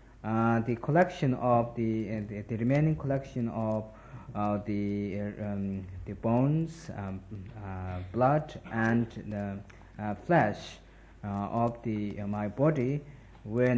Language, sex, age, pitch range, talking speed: Italian, male, 50-69, 105-130 Hz, 135 wpm